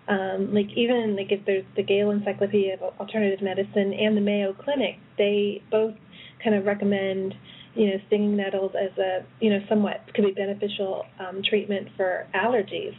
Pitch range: 190-210 Hz